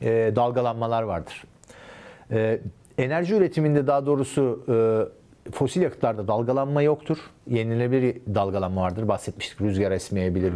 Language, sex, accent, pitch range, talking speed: Turkish, male, native, 110-150 Hz, 110 wpm